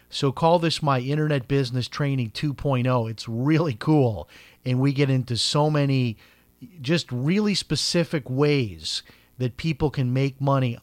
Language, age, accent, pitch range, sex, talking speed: English, 40-59, American, 125-160 Hz, male, 145 wpm